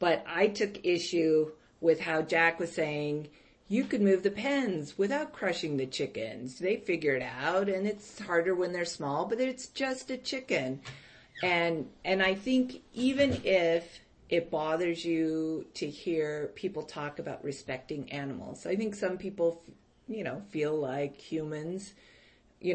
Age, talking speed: 40-59, 155 wpm